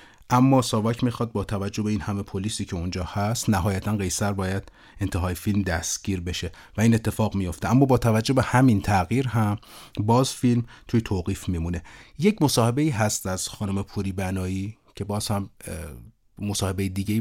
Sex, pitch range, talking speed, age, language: male, 90-115 Hz, 165 wpm, 30-49, Persian